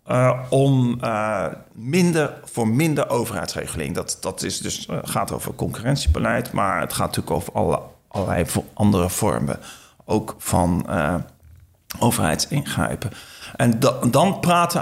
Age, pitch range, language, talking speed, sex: 40-59, 100-140 Hz, Dutch, 130 wpm, male